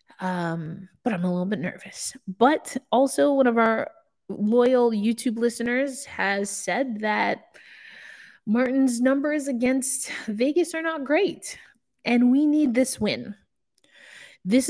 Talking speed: 125 wpm